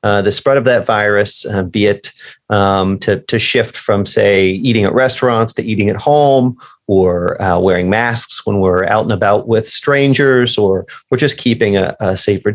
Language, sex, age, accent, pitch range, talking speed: English, male, 30-49, American, 100-125 Hz, 190 wpm